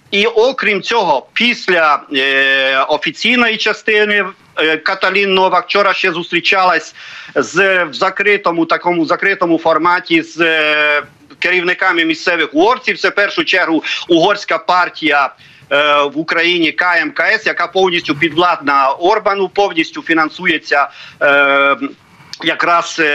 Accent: native